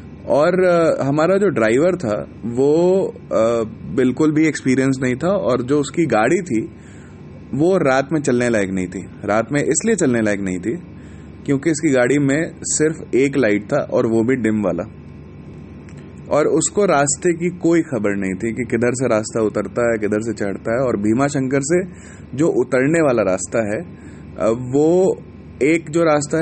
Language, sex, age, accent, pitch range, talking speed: Hindi, male, 30-49, native, 110-150 Hz, 165 wpm